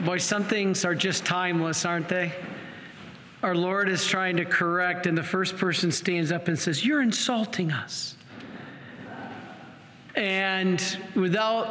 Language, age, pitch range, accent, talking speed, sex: English, 40-59, 175-215 Hz, American, 140 wpm, male